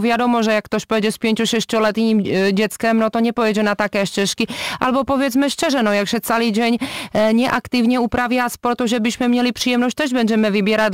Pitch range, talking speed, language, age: 210-235 Hz, 190 wpm, Polish, 30-49